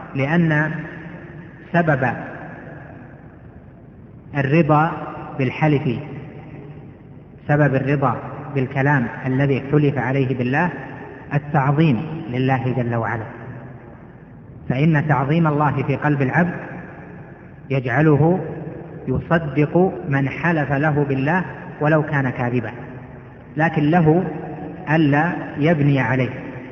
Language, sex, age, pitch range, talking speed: Arabic, female, 30-49, 135-160 Hz, 80 wpm